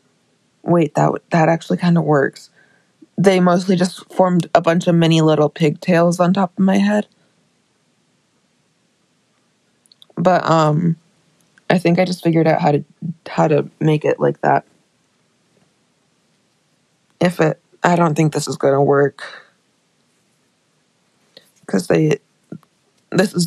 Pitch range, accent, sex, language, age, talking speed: 160-195 Hz, American, female, English, 20-39, 135 wpm